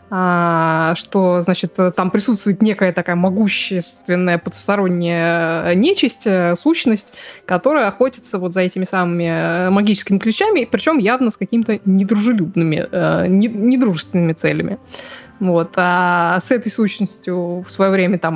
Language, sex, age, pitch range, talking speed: Russian, female, 20-39, 180-235 Hz, 120 wpm